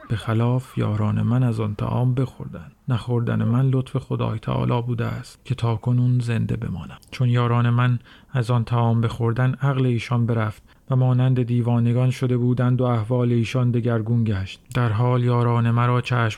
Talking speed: 170 wpm